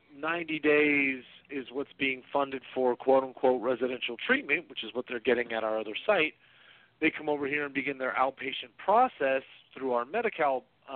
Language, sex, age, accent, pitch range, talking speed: English, male, 40-59, American, 120-140 Hz, 175 wpm